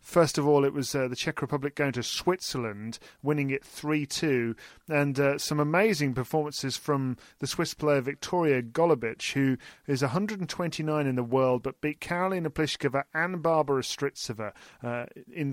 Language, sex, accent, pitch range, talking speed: English, male, British, 125-155 Hz, 160 wpm